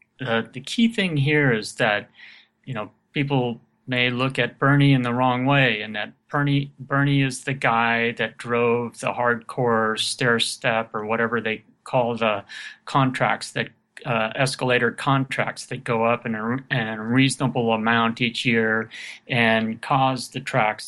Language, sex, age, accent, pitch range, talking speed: English, male, 40-59, American, 115-135 Hz, 160 wpm